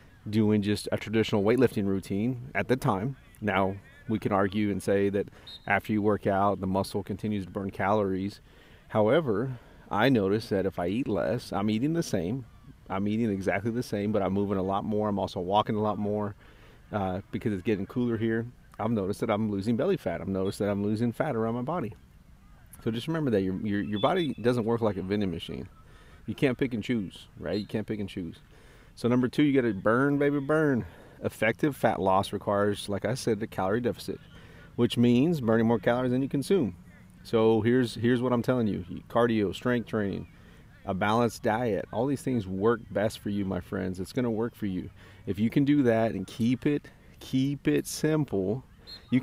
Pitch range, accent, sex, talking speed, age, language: 100-120 Hz, American, male, 205 wpm, 30-49, English